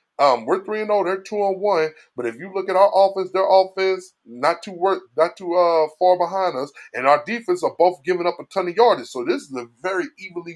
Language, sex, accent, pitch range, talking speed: English, male, American, 170-205 Hz, 225 wpm